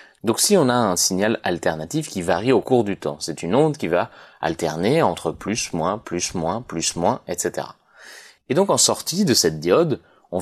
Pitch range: 85-125 Hz